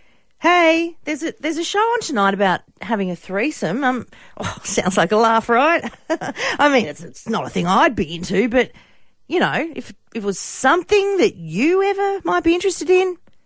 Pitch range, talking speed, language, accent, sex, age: 200-290 Hz, 195 wpm, English, Australian, female, 40-59